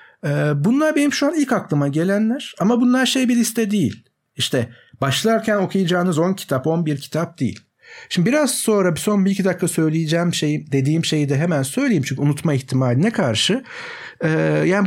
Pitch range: 130-195 Hz